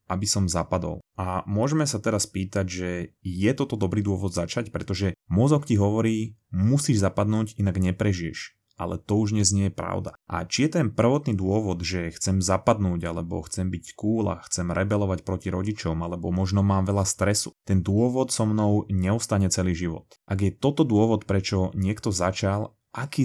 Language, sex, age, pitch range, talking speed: Slovak, male, 30-49, 95-110 Hz, 175 wpm